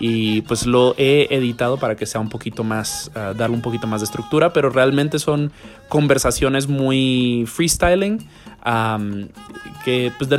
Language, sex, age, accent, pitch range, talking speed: English, male, 20-39, Mexican, 110-135 Hz, 150 wpm